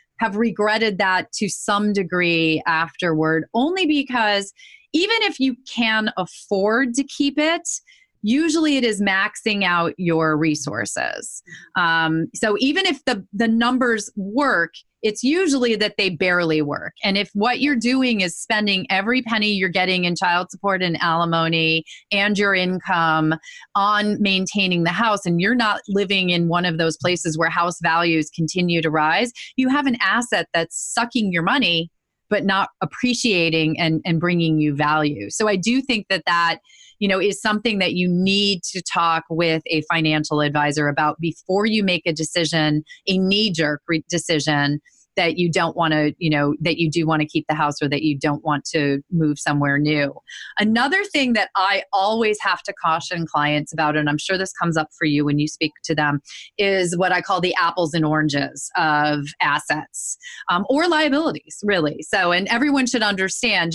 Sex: female